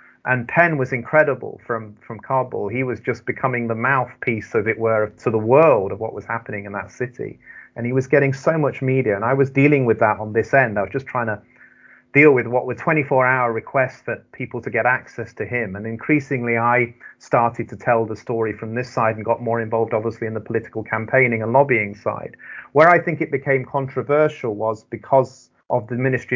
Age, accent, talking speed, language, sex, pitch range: 30-49, British, 220 wpm, English, male, 110-125 Hz